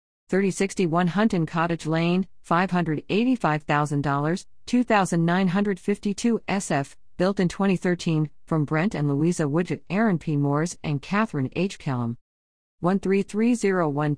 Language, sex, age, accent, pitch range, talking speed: English, female, 50-69, American, 155-205 Hz, 95 wpm